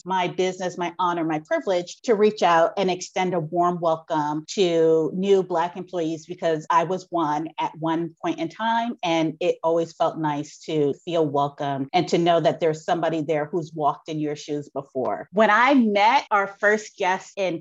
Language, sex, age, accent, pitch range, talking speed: English, female, 30-49, American, 170-220 Hz, 185 wpm